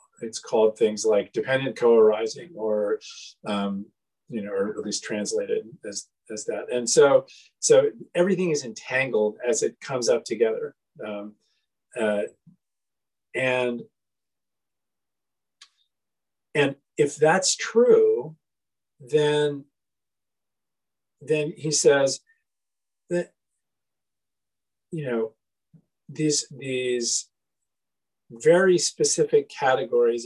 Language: English